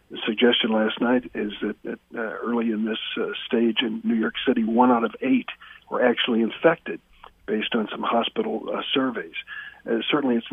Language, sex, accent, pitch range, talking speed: English, male, American, 115-180 Hz, 190 wpm